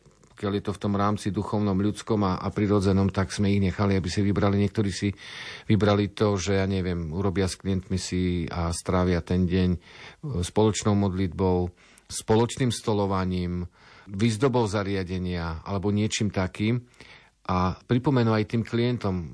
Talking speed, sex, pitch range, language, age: 145 wpm, male, 95-110 Hz, Slovak, 40-59